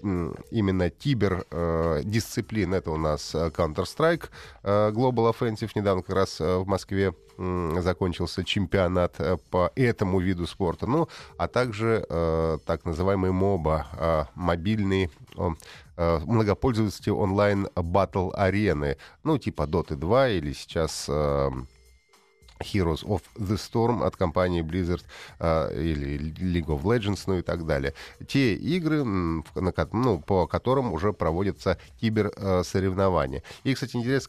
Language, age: Russian, 30-49